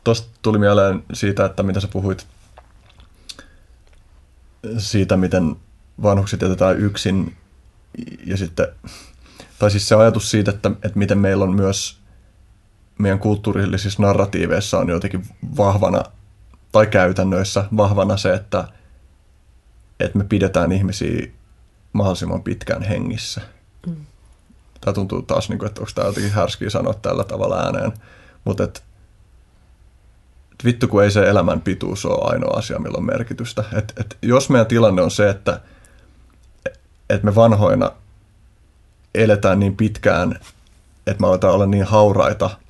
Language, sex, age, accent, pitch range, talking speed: Finnish, male, 30-49, native, 95-105 Hz, 125 wpm